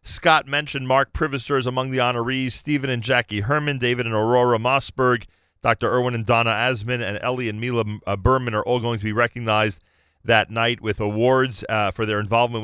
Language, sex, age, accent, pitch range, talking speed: English, male, 40-59, American, 100-125 Hz, 190 wpm